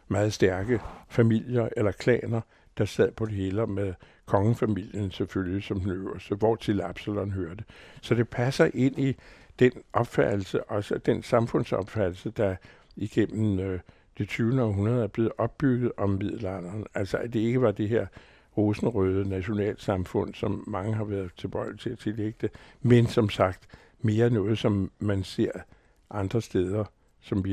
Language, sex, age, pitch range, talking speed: Danish, male, 60-79, 95-115 Hz, 155 wpm